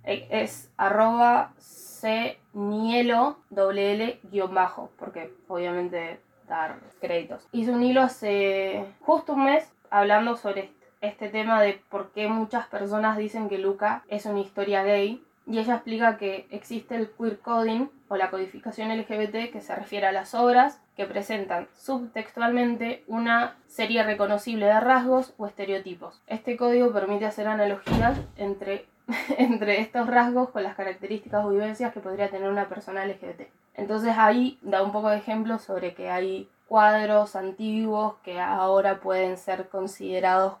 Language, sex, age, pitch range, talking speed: Spanish, female, 20-39, 195-230 Hz, 145 wpm